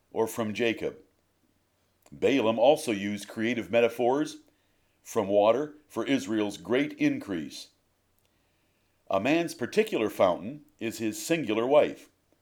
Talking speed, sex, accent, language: 105 wpm, male, American, English